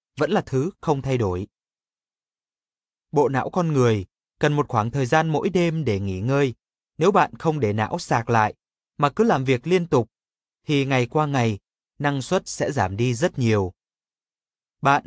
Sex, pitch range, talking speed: male, 120-175 Hz, 180 wpm